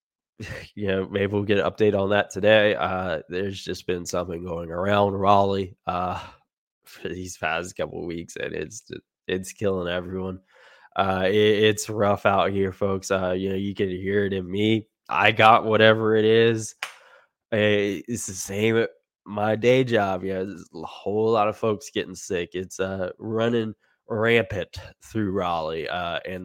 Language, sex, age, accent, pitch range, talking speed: English, male, 10-29, American, 90-105 Hz, 170 wpm